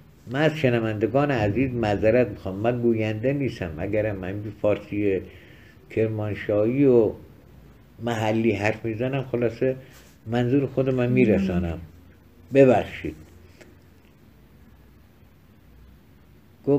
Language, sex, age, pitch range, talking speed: Persian, male, 60-79, 95-125 Hz, 90 wpm